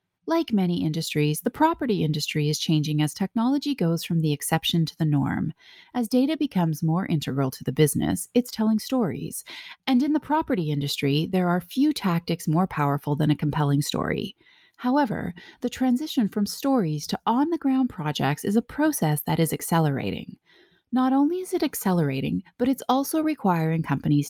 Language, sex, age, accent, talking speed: English, female, 30-49, American, 165 wpm